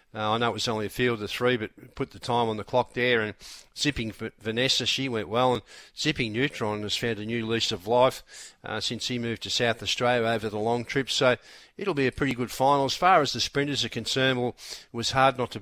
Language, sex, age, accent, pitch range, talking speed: English, male, 50-69, Australian, 110-125 Hz, 260 wpm